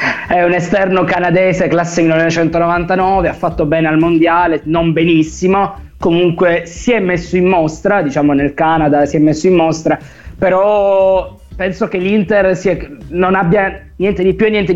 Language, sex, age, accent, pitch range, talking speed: Italian, male, 20-39, native, 155-185 Hz, 155 wpm